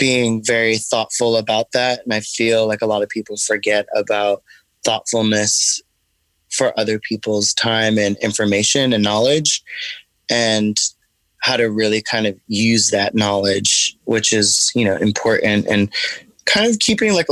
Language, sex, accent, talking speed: English, male, American, 150 wpm